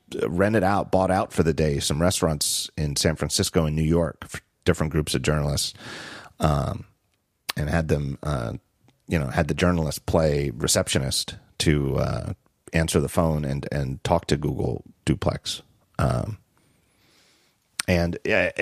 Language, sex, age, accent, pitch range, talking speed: English, male, 40-59, American, 75-95 Hz, 140 wpm